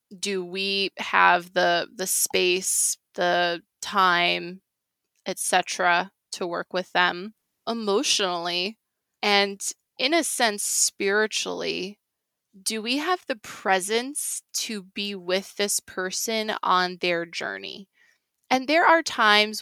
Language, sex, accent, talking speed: English, female, American, 115 wpm